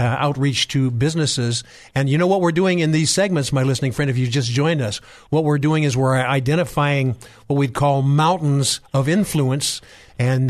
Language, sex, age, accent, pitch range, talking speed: English, male, 50-69, American, 130-160 Hz, 195 wpm